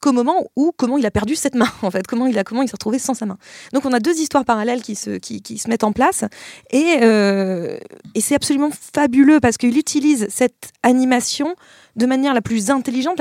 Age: 20-39